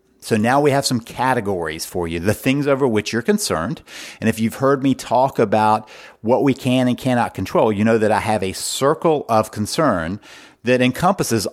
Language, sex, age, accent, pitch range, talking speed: English, male, 50-69, American, 105-130 Hz, 200 wpm